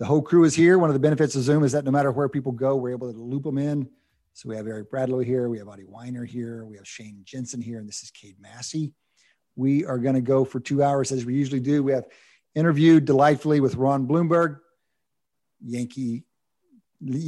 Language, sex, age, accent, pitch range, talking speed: English, male, 50-69, American, 120-150 Hz, 225 wpm